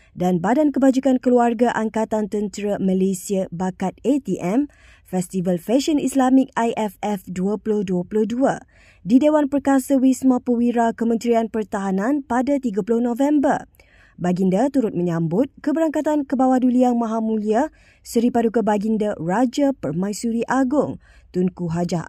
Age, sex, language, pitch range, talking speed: 20-39, female, Malay, 190-265 Hz, 105 wpm